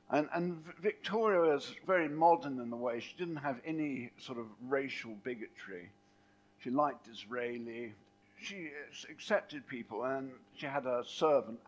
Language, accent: English, British